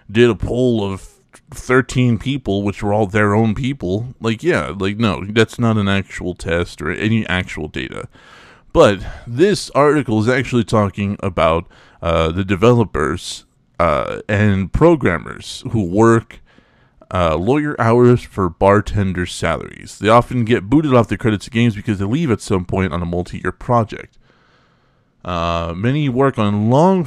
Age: 30-49